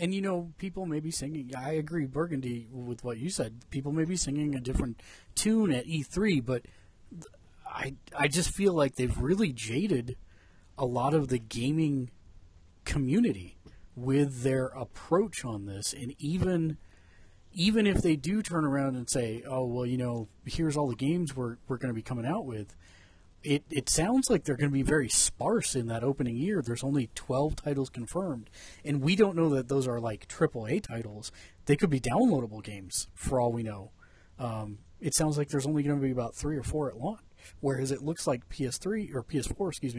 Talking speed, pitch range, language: 195 wpm, 110-155 Hz, English